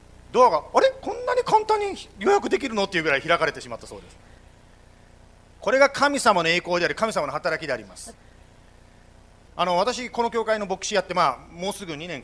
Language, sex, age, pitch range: Japanese, male, 40-59, 170-280 Hz